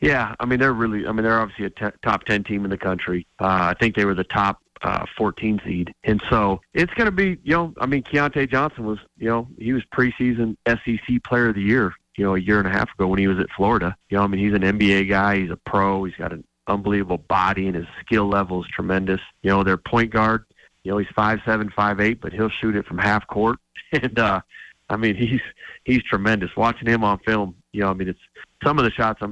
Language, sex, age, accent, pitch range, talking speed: English, male, 40-59, American, 95-115 Hz, 255 wpm